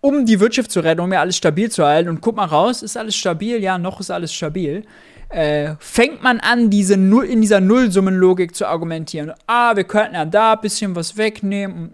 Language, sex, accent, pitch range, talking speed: German, male, German, 160-220 Hz, 215 wpm